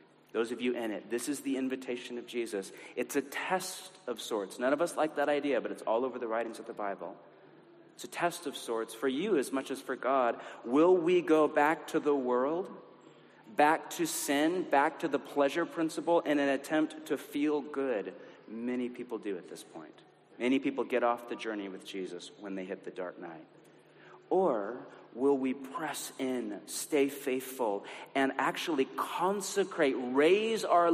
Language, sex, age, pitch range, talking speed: English, male, 40-59, 120-155 Hz, 185 wpm